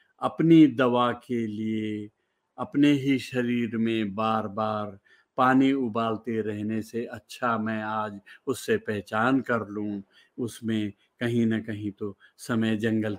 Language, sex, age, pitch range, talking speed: Hindi, male, 50-69, 110-125 Hz, 125 wpm